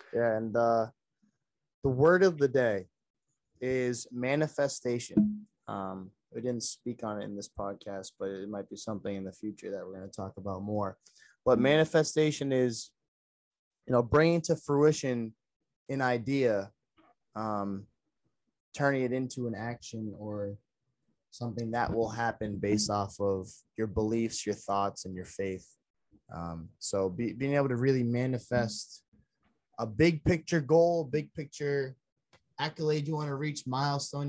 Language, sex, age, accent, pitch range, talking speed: English, male, 20-39, American, 105-140 Hz, 150 wpm